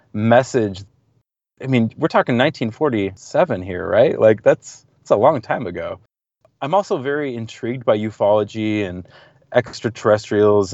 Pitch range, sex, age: 100-130 Hz, male, 30-49